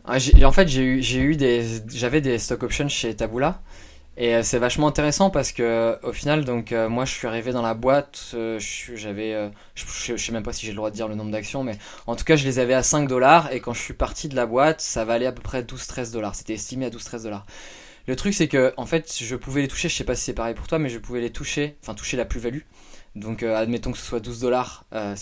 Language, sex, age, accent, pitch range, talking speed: French, male, 20-39, French, 115-145 Hz, 280 wpm